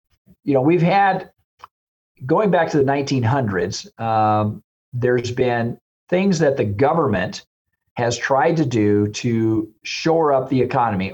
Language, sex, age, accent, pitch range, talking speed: English, male, 50-69, American, 110-140 Hz, 135 wpm